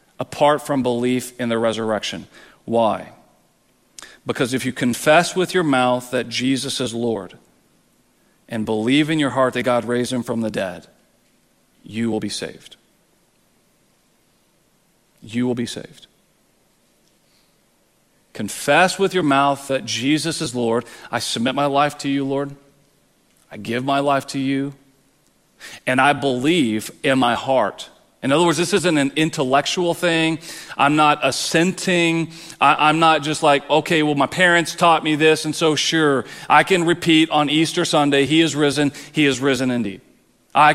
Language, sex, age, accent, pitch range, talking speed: English, male, 40-59, American, 125-155 Hz, 155 wpm